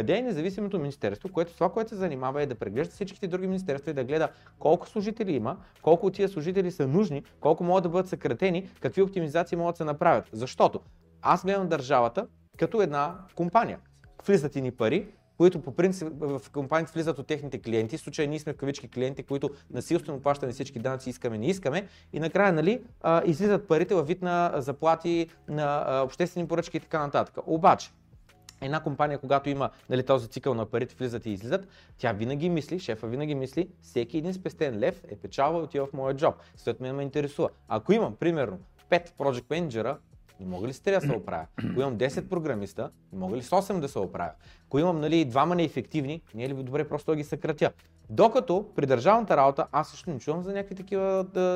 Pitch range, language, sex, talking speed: 135-180 Hz, Bulgarian, male, 200 wpm